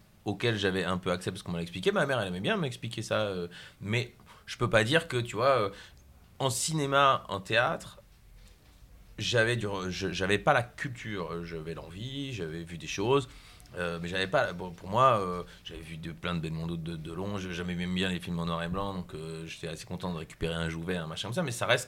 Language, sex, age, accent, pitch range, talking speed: French, male, 30-49, French, 85-115 Hz, 250 wpm